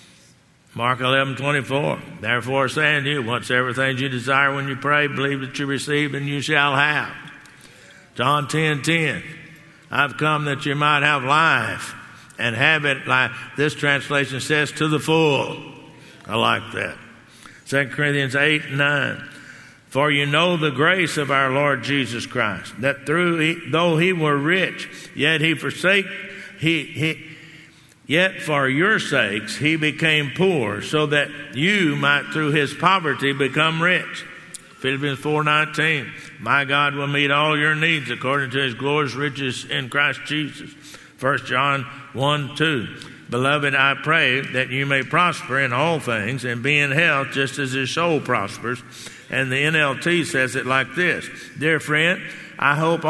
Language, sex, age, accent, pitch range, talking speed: English, male, 60-79, American, 135-155 Hz, 160 wpm